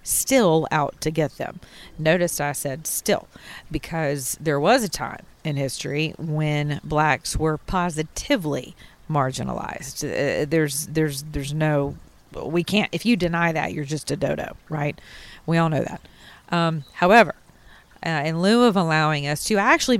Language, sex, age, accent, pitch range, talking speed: English, female, 40-59, American, 145-175 Hz, 155 wpm